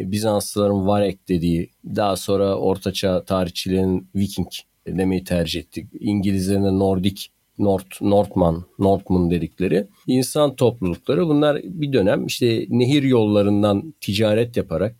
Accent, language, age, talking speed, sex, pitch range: native, Turkish, 50-69, 110 wpm, male, 95-125 Hz